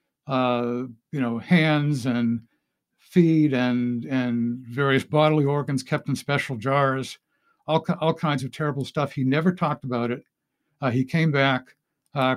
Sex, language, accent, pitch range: male, English, American, 130-155 Hz